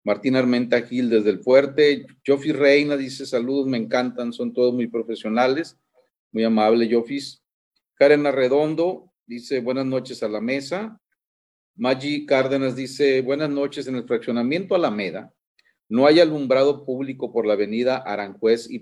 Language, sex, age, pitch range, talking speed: Spanish, male, 40-59, 115-145 Hz, 145 wpm